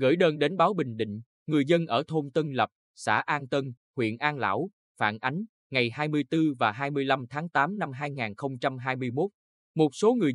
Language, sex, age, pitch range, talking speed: Vietnamese, male, 20-39, 115-155 Hz, 180 wpm